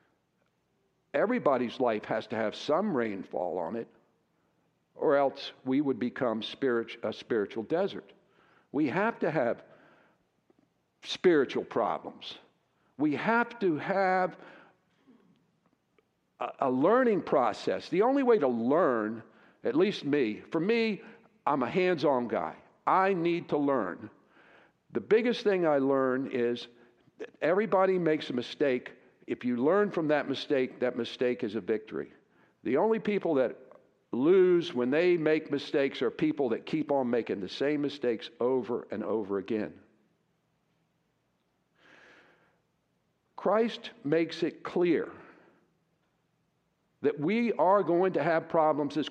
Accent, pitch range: American, 130-195 Hz